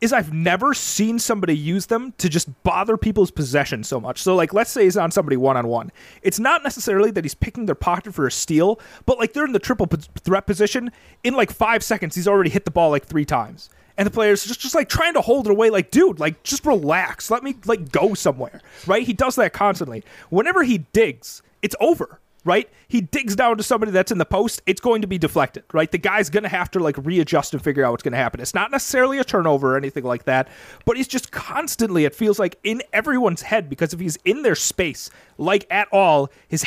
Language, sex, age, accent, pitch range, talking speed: English, male, 30-49, American, 155-215 Hz, 235 wpm